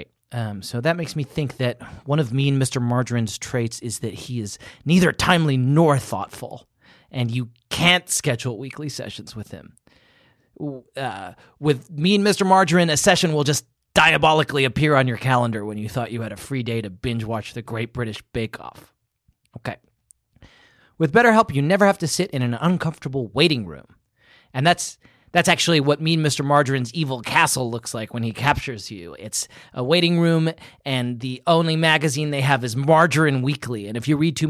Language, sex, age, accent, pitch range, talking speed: English, male, 30-49, American, 115-150 Hz, 185 wpm